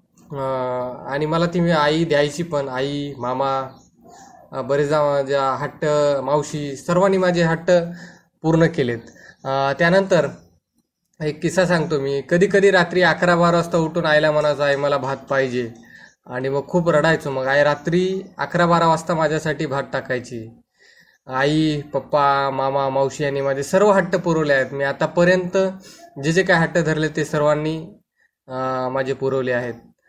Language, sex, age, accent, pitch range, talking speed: Marathi, male, 20-39, native, 135-175 Hz, 135 wpm